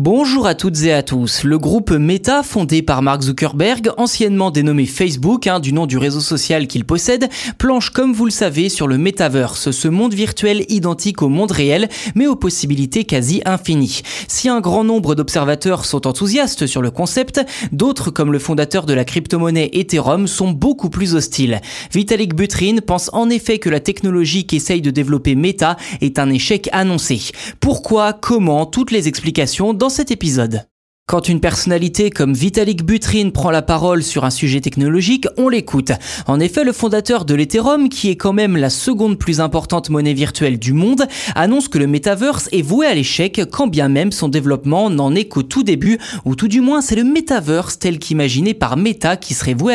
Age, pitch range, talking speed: 20-39, 145-215 Hz, 185 wpm